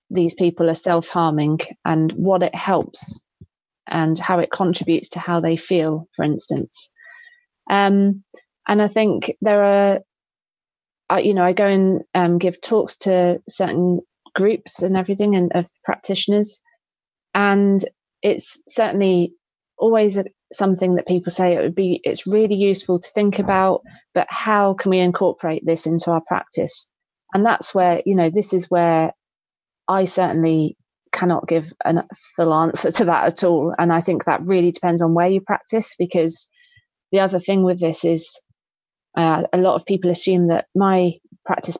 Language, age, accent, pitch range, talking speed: English, 30-49, British, 170-195 Hz, 160 wpm